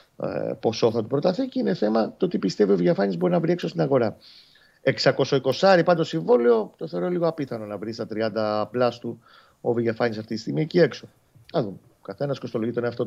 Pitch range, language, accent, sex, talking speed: 110-140 Hz, Greek, native, male, 195 wpm